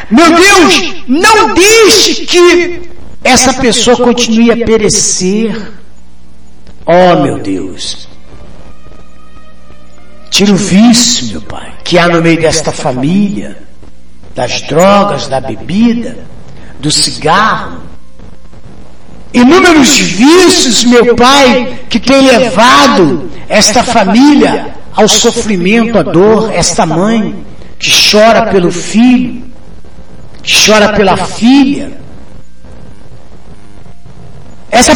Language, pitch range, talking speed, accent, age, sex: Portuguese, 175-280 Hz, 95 wpm, Brazilian, 60-79, male